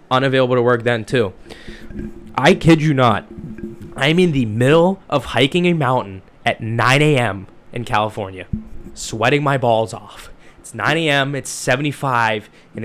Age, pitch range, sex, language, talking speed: 10-29, 110-135 Hz, male, English, 150 wpm